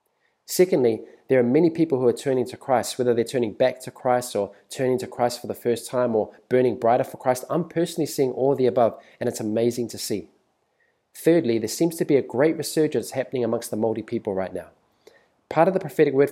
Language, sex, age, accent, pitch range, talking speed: English, male, 20-39, Australian, 115-140 Hz, 225 wpm